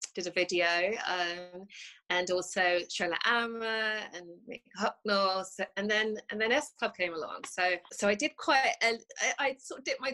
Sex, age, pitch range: female, 20-39, 190-230 Hz